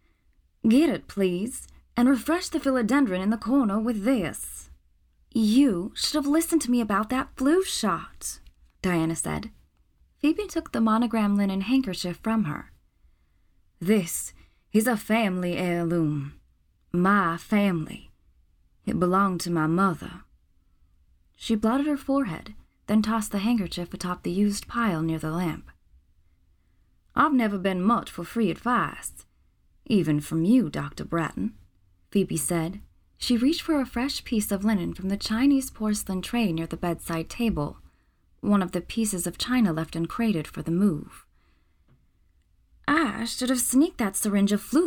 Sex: female